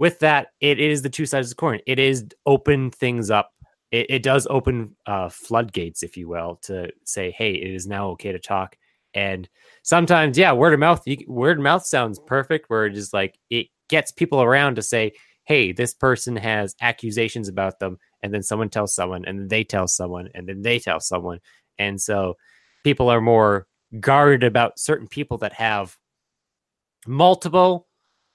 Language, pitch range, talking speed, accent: English, 95-135 Hz, 185 wpm, American